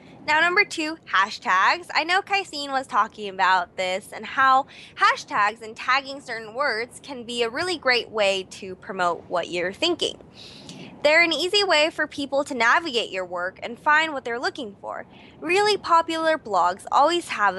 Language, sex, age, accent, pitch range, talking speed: English, female, 20-39, American, 205-320 Hz, 170 wpm